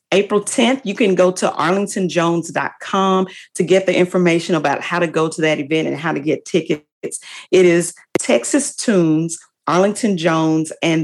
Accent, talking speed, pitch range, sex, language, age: American, 165 wpm, 160-195 Hz, female, English, 40-59